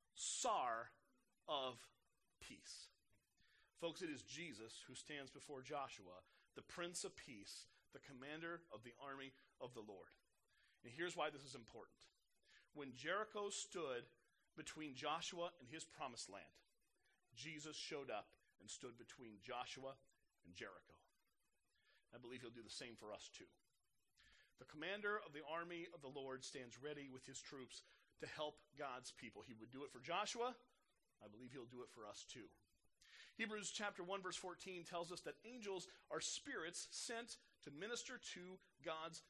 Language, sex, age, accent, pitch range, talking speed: English, male, 40-59, American, 150-205 Hz, 155 wpm